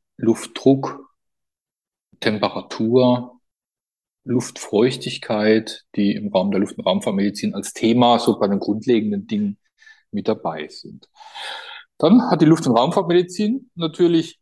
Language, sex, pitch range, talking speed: German, male, 110-165 Hz, 110 wpm